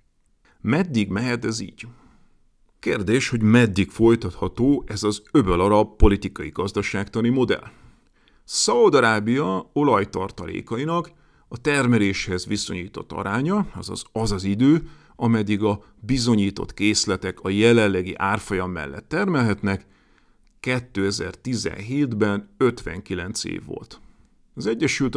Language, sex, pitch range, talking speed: Hungarian, male, 100-135 Hz, 90 wpm